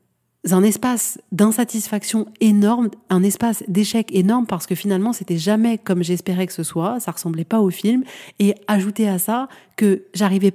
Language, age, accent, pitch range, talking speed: French, 30-49, French, 185-215 Hz, 165 wpm